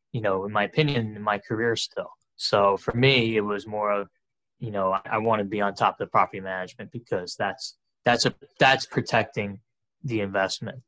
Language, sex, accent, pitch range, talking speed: English, male, American, 100-120 Hz, 205 wpm